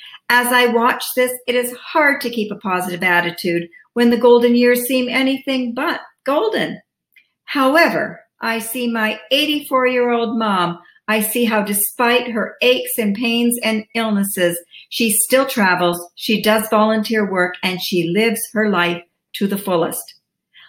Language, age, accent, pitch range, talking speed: English, 50-69, American, 190-250 Hz, 150 wpm